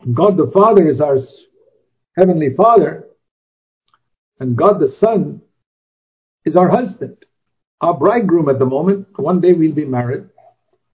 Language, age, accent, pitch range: English, 50-69, Indian, 150-205 Hz